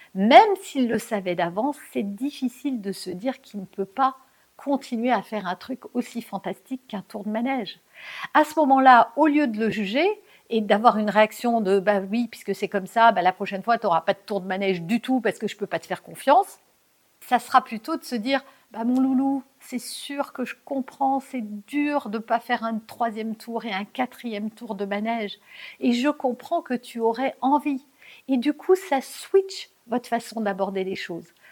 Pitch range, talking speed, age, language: 200-260 Hz, 220 wpm, 60-79, French